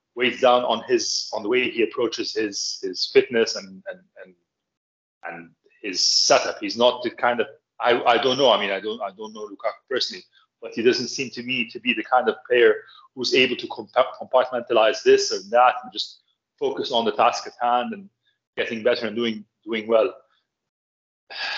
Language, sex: English, male